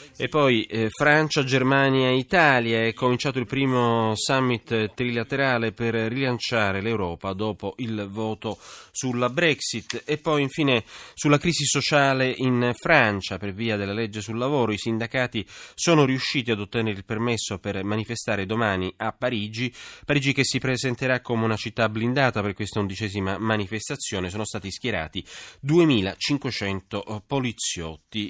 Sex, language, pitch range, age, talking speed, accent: male, Italian, 110-145 Hz, 30-49, 140 wpm, native